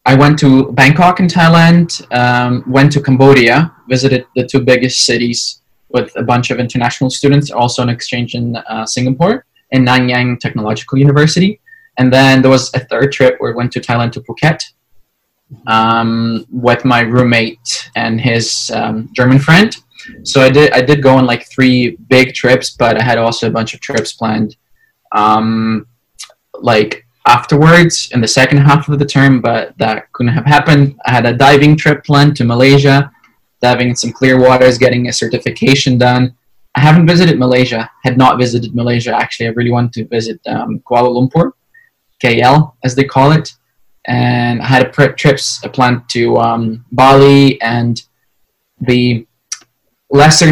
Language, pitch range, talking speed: English, 120-140 Hz, 165 wpm